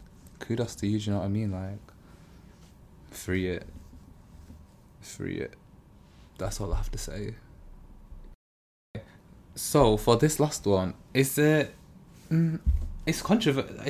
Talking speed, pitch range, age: 125 wpm, 90-110 Hz, 20-39